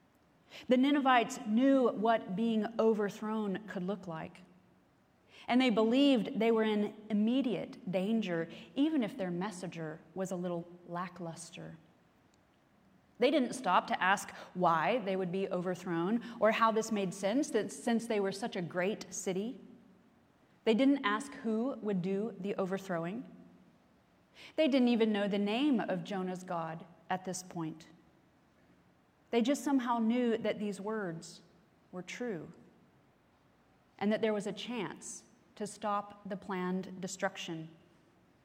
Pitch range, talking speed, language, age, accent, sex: 185-230 Hz, 135 wpm, English, 30-49, American, female